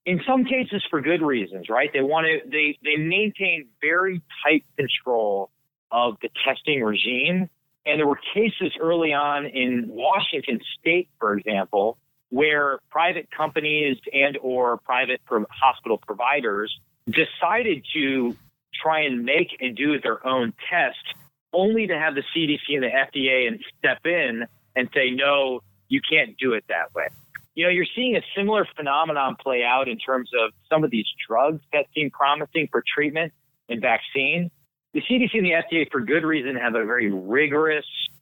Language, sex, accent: English, male, American